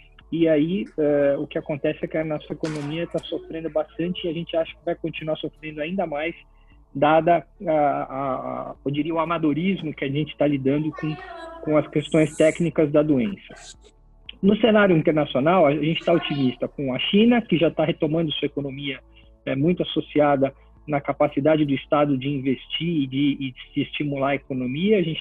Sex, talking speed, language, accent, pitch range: male, 190 wpm, Portuguese, Brazilian, 140-160 Hz